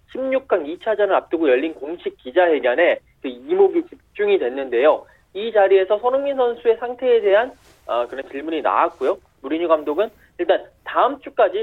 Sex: male